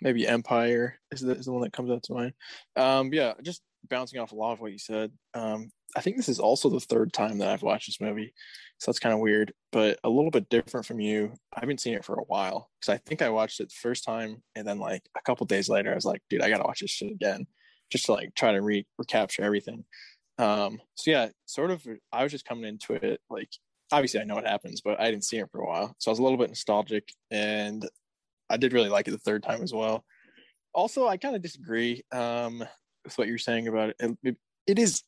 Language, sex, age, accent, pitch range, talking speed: English, male, 20-39, American, 110-125 Hz, 255 wpm